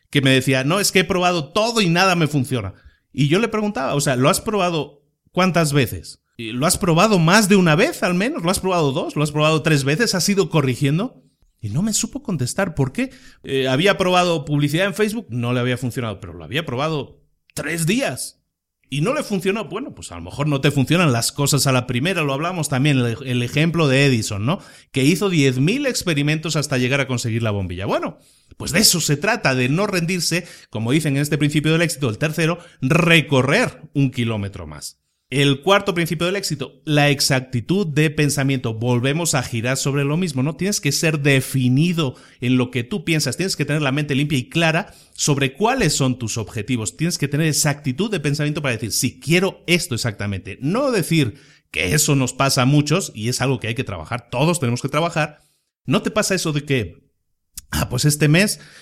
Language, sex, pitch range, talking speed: Spanish, male, 125-170 Hz, 210 wpm